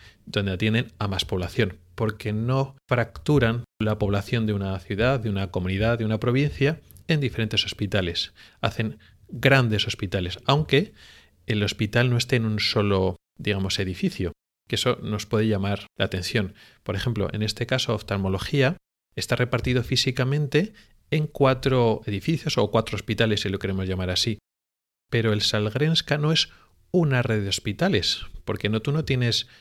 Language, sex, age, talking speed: Spanish, male, 30-49, 155 wpm